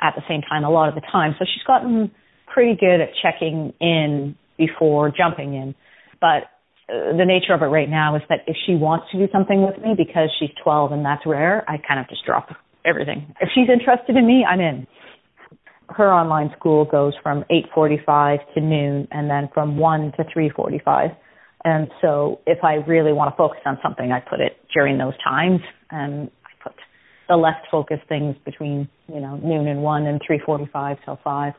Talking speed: 195 wpm